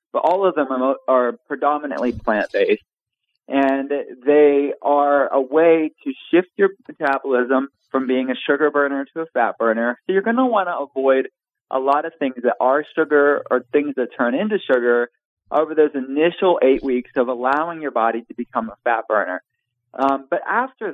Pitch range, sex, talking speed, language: 125-160 Hz, male, 180 wpm, English